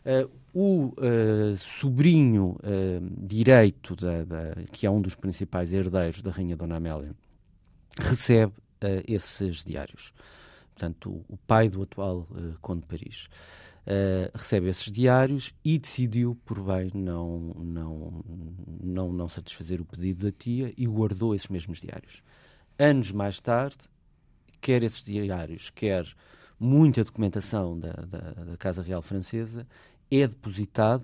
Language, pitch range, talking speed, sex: Portuguese, 90-120 Hz, 120 wpm, male